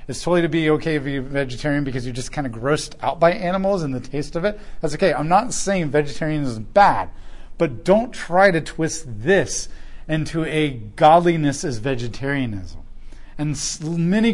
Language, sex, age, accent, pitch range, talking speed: English, male, 40-59, American, 115-155 Hz, 180 wpm